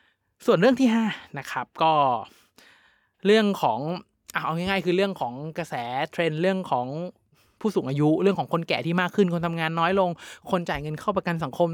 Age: 20-39